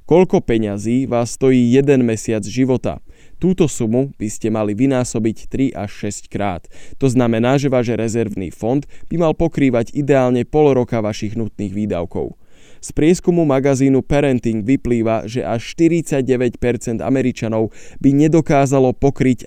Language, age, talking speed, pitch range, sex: Slovak, 20-39, 135 wpm, 105-130 Hz, male